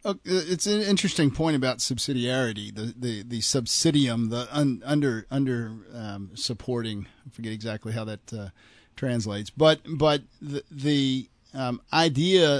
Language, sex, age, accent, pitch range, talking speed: English, male, 40-59, American, 115-150 Hz, 145 wpm